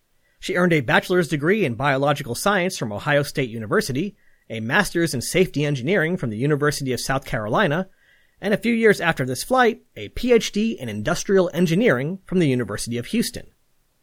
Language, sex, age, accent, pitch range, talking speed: English, male, 30-49, American, 130-195 Hz, 170 wpm